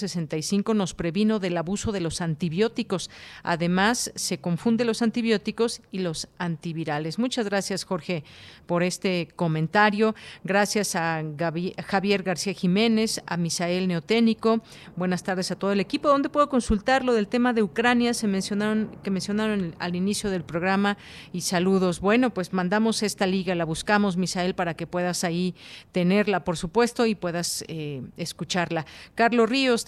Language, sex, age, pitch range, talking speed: Spanish, female, 40-59, 175-215 Hz, 155 wpm